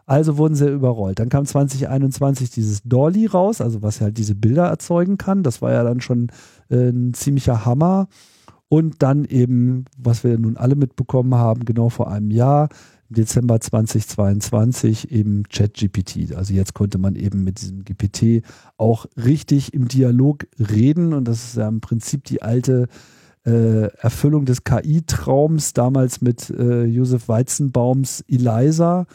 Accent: German